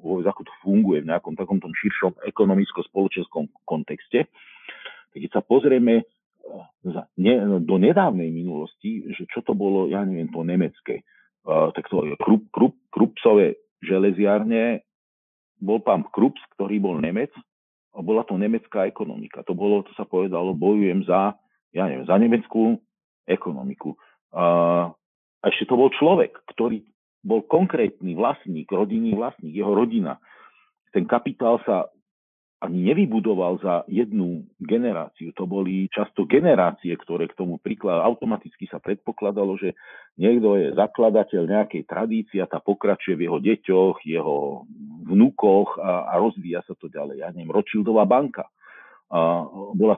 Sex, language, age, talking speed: male, Slovak, 40-59, 135 wpm